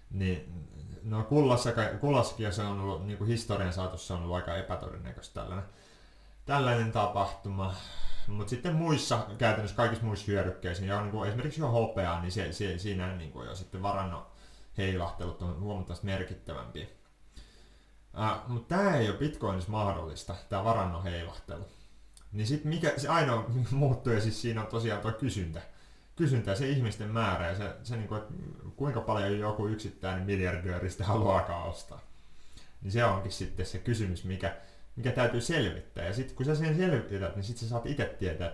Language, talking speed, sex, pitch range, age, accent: Finnish, 160 wpm, male, 95-120 Hz, 30-49, native